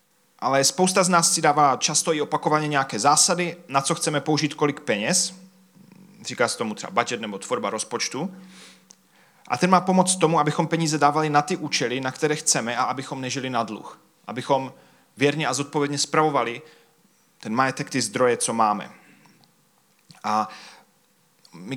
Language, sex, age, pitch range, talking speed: Czech, male, 30-49, 130-155 Hz, 155 wpm